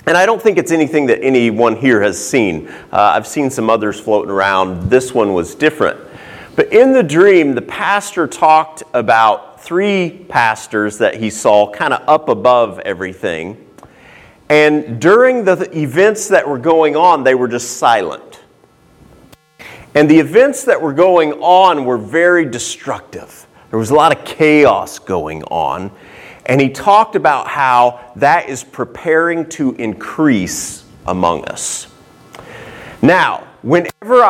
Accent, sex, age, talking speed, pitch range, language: American, male, 40-59, 145 wpm, 115-170 Hz, English